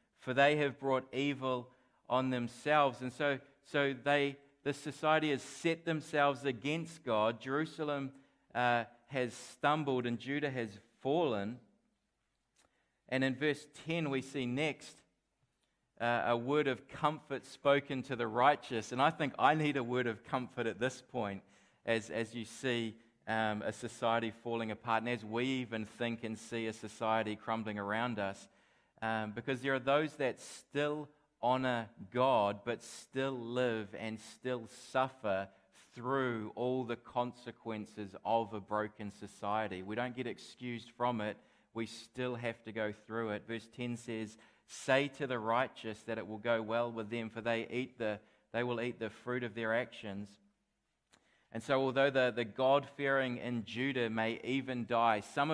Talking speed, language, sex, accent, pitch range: 160 wpm, English, male, Australian, 115-135 Hz